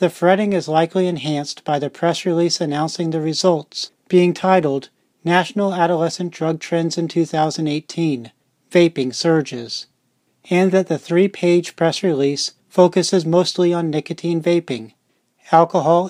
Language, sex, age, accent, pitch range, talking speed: English, male, 40-59, American, 150-180 Hz, 125 wpm